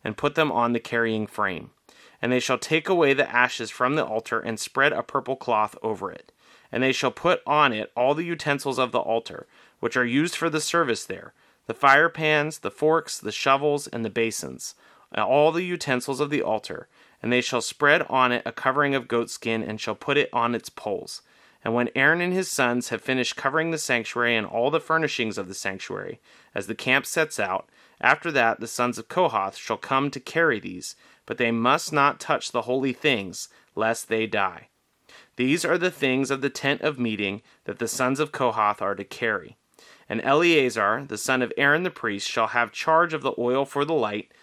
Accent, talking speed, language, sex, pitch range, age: American, 210 wpm, English, male, 115-145 Hz, 30-49